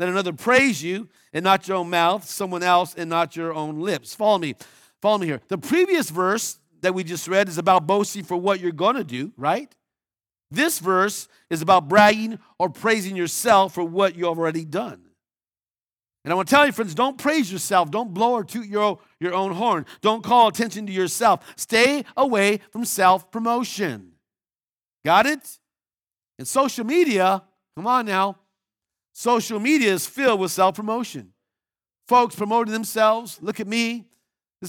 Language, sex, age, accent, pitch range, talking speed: English, male, 50-69, American, 175-225 Hz, 170 wpm